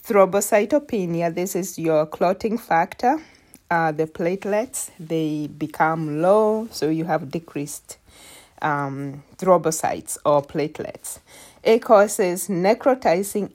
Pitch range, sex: 160-215 Hz, female